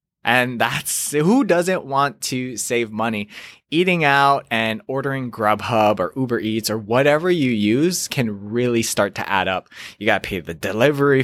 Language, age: English, 20-39